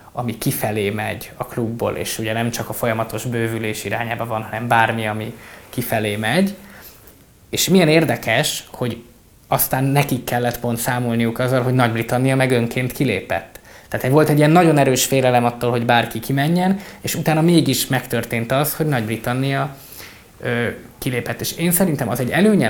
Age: 20-39